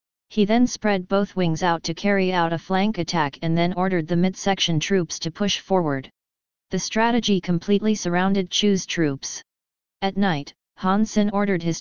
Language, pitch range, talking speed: English, 160-195 Hz, 170 wpm